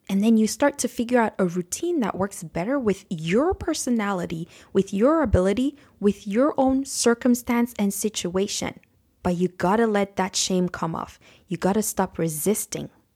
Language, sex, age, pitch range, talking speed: English, female, 20-39, 175-220 Hz, 165 wpm